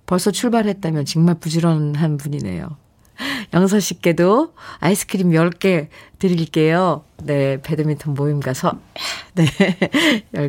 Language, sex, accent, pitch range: Korean, female, native, 155-220 Hz